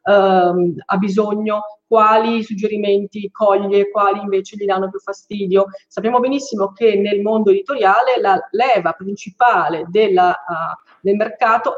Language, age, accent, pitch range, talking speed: Italian, 30-49, native, 195-235 Hz, 125 wpm